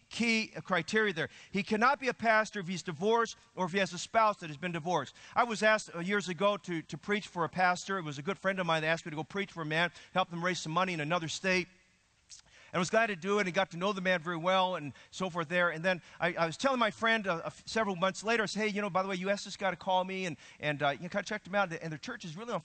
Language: English